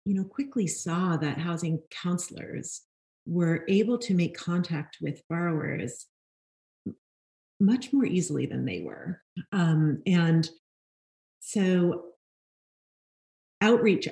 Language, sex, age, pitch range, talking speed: English, female, 30-49, 160-190 Hz, 100 wpm